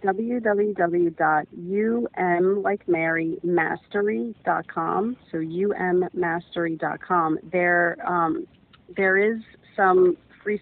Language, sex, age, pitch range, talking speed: English, female, 40-59, 165-180 Hz, 75 wpm